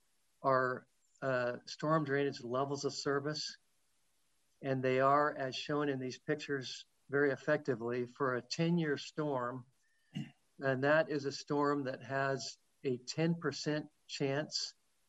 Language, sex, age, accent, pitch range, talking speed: English, male, 50-69, American, 125-145 Hz, 125 wpm